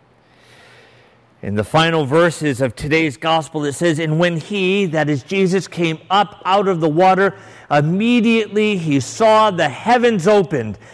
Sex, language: male, English